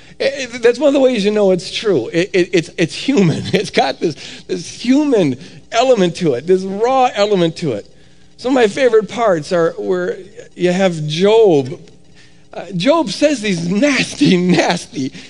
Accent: American